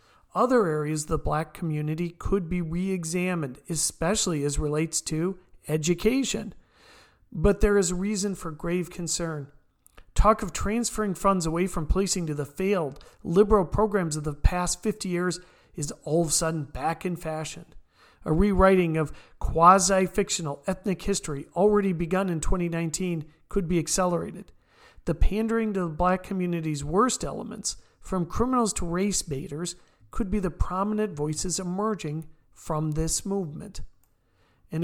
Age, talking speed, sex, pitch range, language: 40-59, 140 wpm, male, 160-200 Hz, English